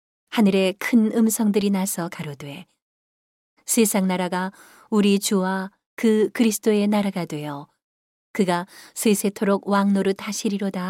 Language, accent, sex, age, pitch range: Korean, native, female, 40-59, 180-210 Hz